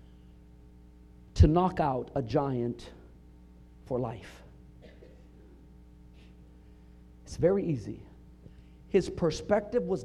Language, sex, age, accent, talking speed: English, male, 50-69, American, 80 wpm